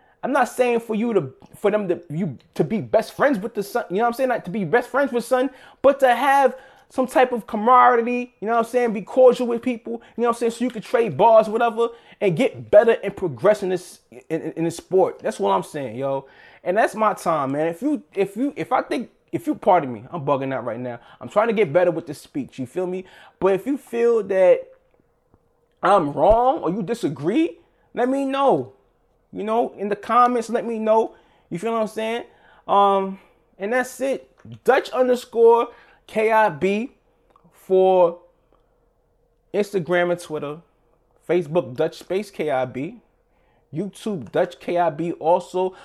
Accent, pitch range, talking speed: American, 165-235 Hz, 200 wpm